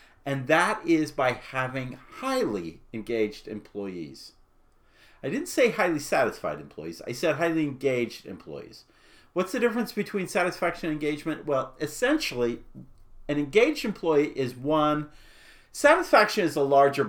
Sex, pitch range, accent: male, 125-175 Hz, American